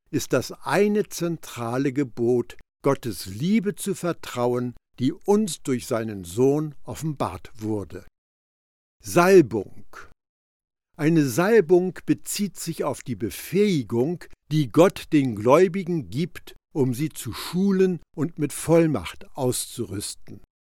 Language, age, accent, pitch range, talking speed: German, 60-79, German, 120-180 Hz, 110 wpm